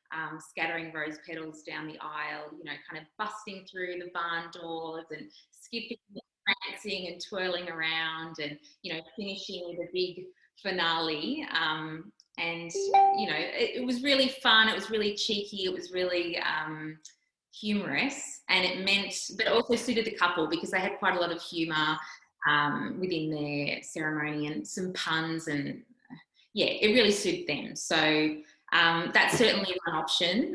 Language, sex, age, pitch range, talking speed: English, female, 20-39, 160-200 Hz, 165 wpm